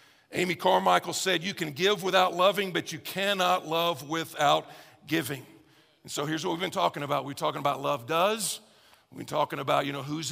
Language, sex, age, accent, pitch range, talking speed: English, male, 50-69, American, 135-165 Hz, 200 wpm